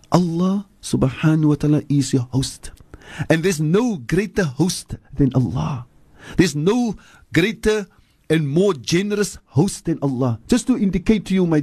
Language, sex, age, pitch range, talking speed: English, male, 50-69, 130-175 Hz, 150 wpm